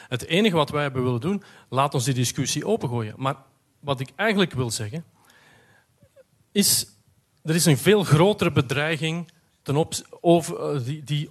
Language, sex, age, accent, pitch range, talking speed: Dutch, male, 40-59, Dutch, 125-160 Hz, 160 wpm